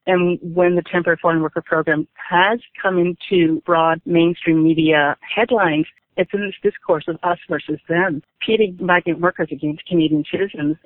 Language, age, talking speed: English, 40-59, 155 wpm